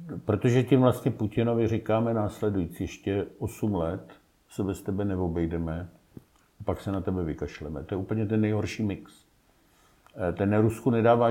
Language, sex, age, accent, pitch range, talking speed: Czech, male, 50-69, native, 90-125 Hz, 155 wpm